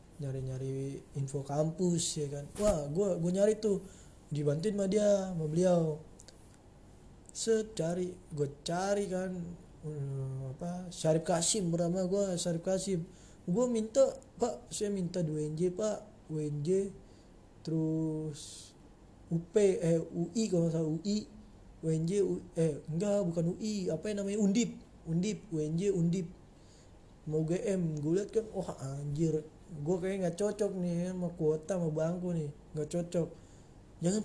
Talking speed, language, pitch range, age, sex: 135 wpm, Indonesian, 155-205 Hz, 20-39, male